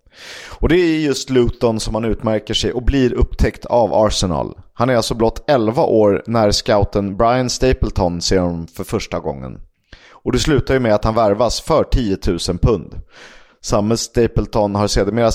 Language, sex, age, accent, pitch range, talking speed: Swedish, male, 30-49, native, 105-130 Hz, 175 wpm